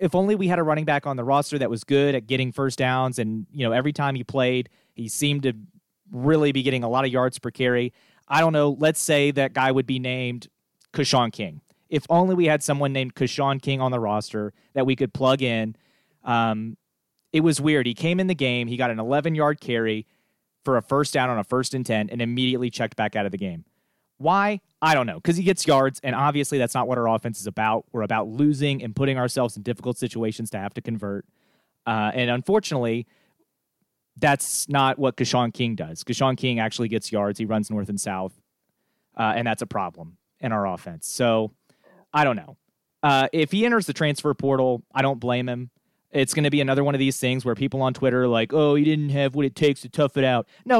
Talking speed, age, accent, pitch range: 230 wpm, 30-49, American, 120-145 Hz